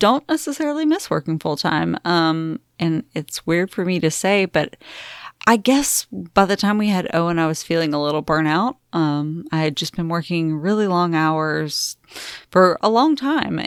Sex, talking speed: female, 180 wpm